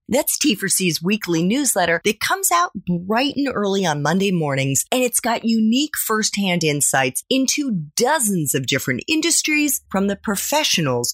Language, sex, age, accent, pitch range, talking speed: English, female, 30-49, American, 155-255 Hz, 145 wpm